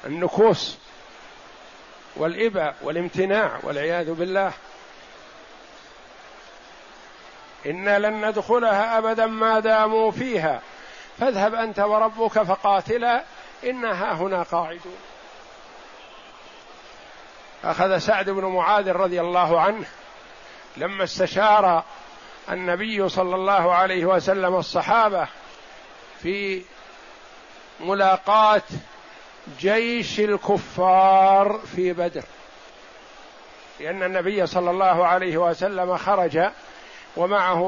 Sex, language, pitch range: male, Arabic, 185-220 Hz